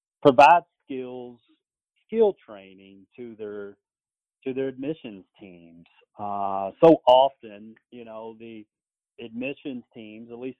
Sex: male